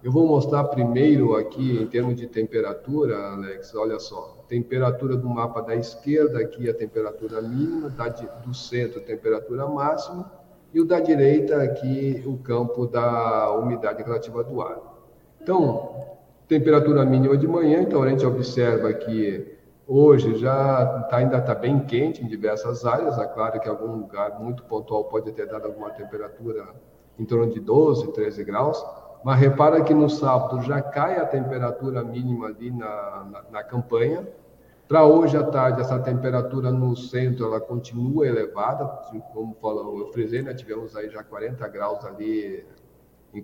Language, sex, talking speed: Portuguese, male, 155 wpm